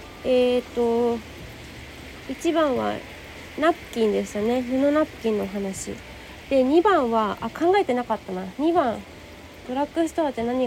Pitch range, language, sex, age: 230-305 Hz, Japanese, female, 20-39